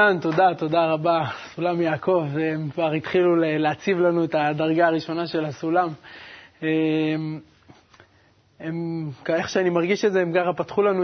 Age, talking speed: 20-39, 130 wpm